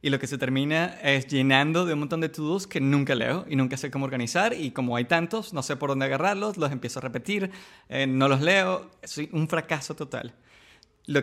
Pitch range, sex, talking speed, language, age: 130-155 Hz, male, 225 wpm, English, 20-39